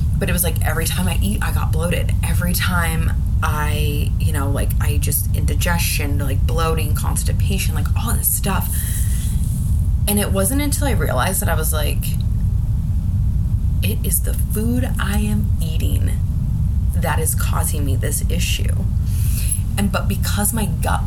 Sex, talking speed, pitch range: female, 155 wpm, 90-100 Hz